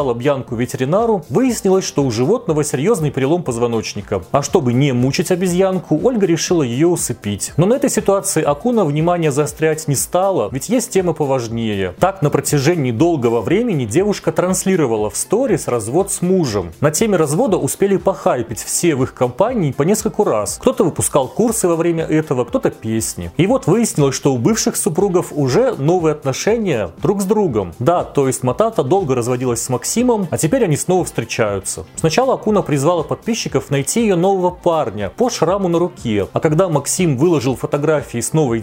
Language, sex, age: Russian, male, 30-49